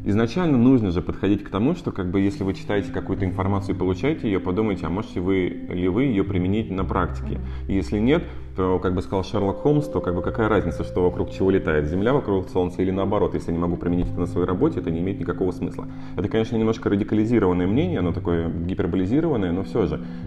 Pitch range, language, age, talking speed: 90-110 Hz, Russian, 30-49, 220 wpm